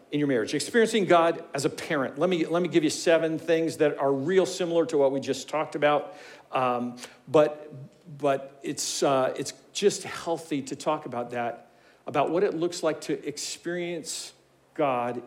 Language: English